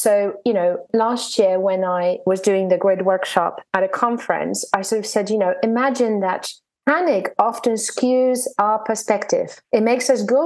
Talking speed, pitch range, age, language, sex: 185 wpm, 205-250 Hz, 30-49, English, female